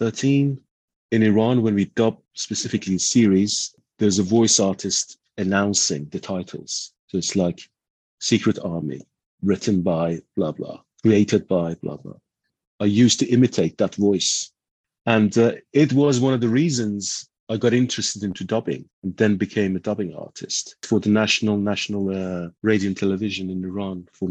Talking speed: 160 wpm